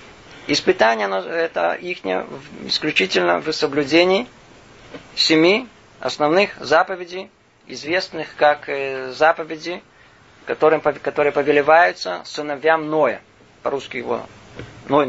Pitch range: 135-170 Hz